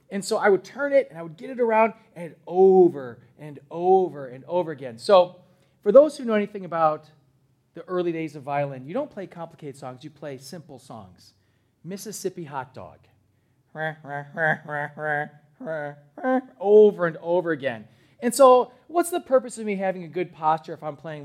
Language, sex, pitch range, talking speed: English, male, 140-205 Hz, 170 wpm